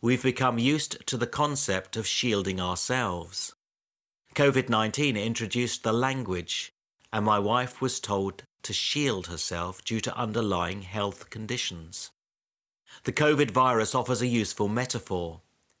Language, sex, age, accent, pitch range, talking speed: English, male, 50-69, British, 100-125 Hz, 130 wpm